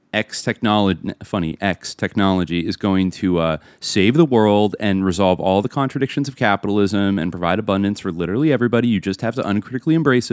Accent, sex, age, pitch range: American, male, 30-49, 90-120 Hz